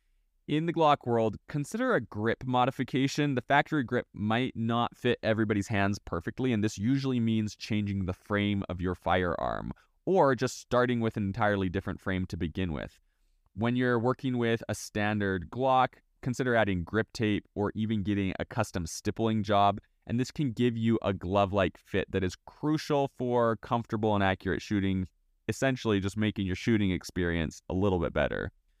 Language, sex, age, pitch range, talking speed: English, male, 20-39, 95-125 Hz, 170 wpm